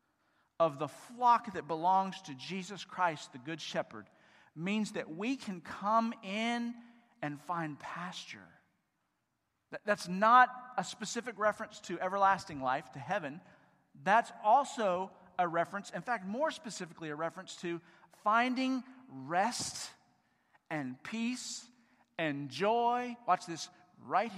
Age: 40-59